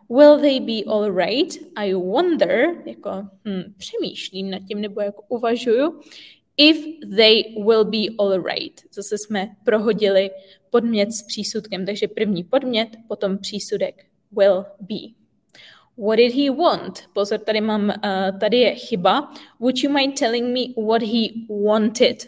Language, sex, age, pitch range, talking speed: Czech, female, 20-39, 205-255 Hz, 145 wpm